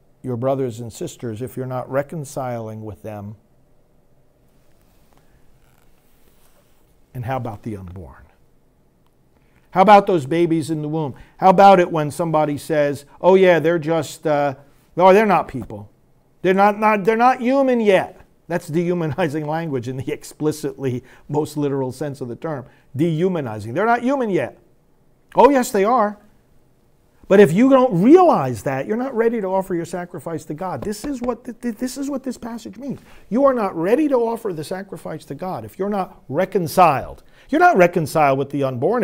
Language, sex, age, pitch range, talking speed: English, male, 50-69, 140-210 Hz, 160 wpm